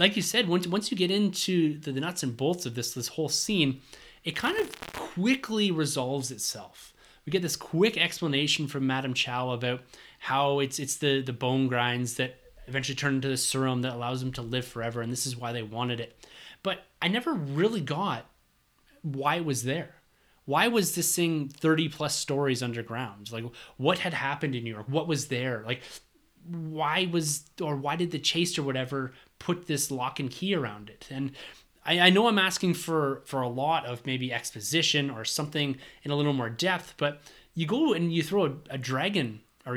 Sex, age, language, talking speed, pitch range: male, 20-39, English, 195 wpm, 125-165 Hz